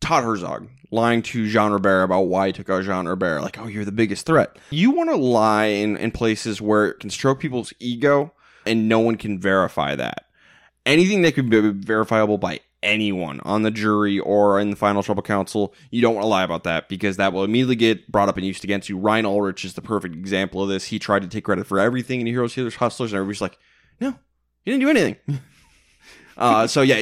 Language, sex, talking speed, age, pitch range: English, male, 225 wpm, 20-39, 100-125 Hz